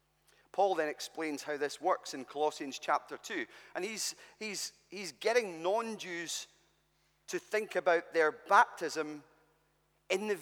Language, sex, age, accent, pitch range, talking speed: English, male, 30-49, British, 165-250 Hz, 130 wpm